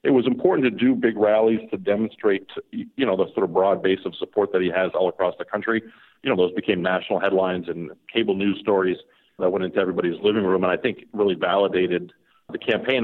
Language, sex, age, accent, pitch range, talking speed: English, male, 50-69, American, 90-110 Hz, 220 wpm